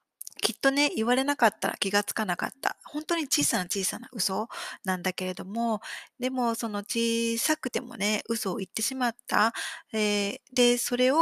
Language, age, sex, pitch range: Japanese, 20-39, female, 195-245 Hz